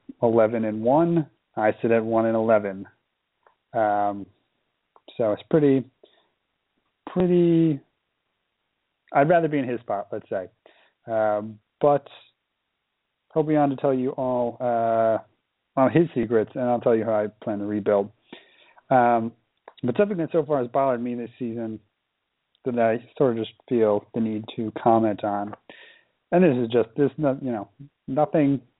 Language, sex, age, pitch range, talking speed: English, male, 40-59, 110-135 Hz, 155 wpm